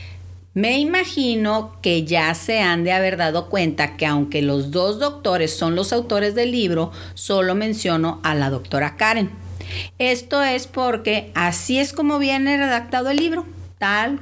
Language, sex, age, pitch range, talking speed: English, female, 50-69, 155-240 Hz, 155 wpm